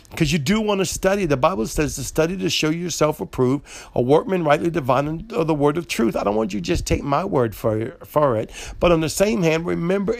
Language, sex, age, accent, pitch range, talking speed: English, male, 50-69, American, 145-185 Hz, 255 wpm